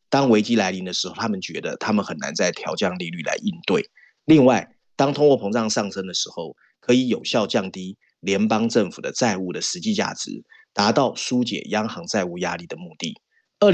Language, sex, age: Chinese, male, 30-49